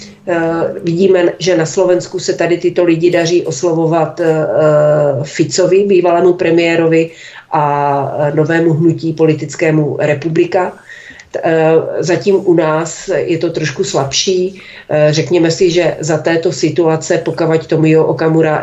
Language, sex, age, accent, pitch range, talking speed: Czech, female, 40-59, native, 155-185 Hz, 110 wpm